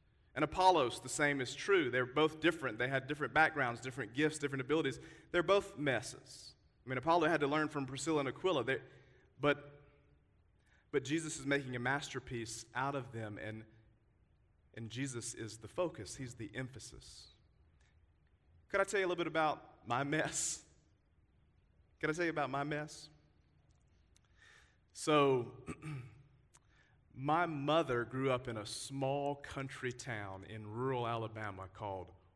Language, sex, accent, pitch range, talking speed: English, male, American, 105-140 Hz, 150 wpm